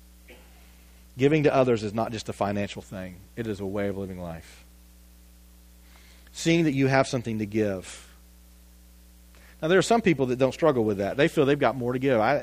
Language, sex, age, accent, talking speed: English, male, 40-59, American, 195 wpm